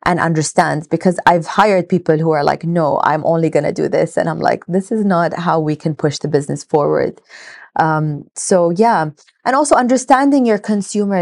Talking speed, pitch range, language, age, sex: 200 wpm, 150-180 Hz, English, 20-39, female